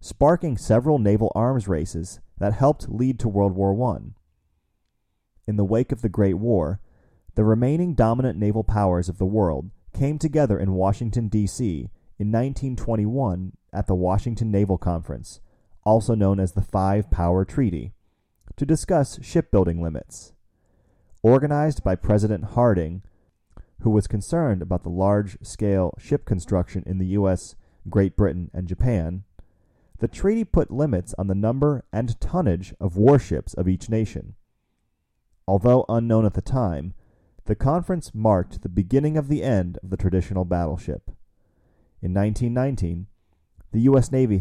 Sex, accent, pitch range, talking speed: male, American, 90-115 Hz, 140 wpm